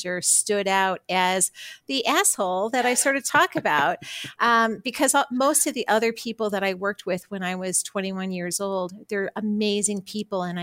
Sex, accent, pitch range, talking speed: female, American, 190-235 Hz, 180 wpm